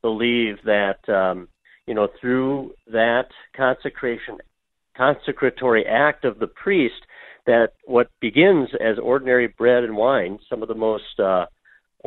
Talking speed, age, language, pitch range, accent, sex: 130 wpm, 50-69, English, 110-130 Hz, American, male